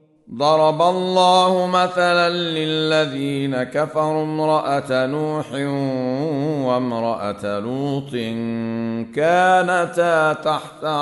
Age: 50-69